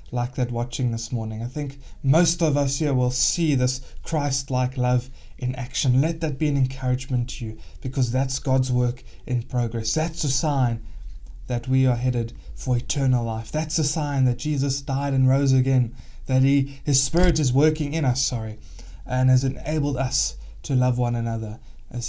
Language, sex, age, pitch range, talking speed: English, male, 20-39, 120-140 Hz, 185 wpm